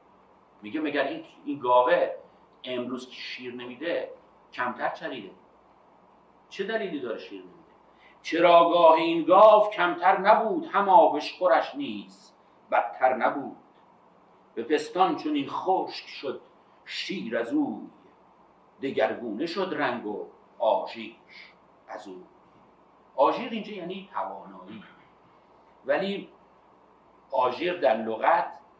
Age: 50-69